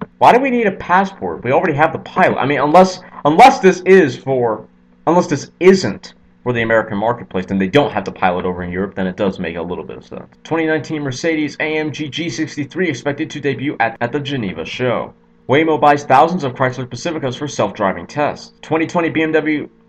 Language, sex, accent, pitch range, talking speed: English, male, American, 110-165 Hz, 195 wpm